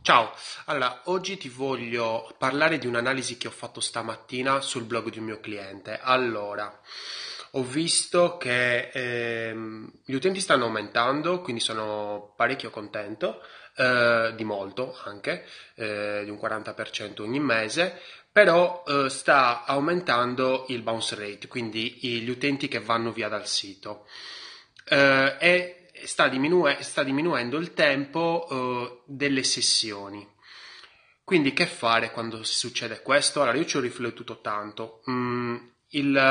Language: Italian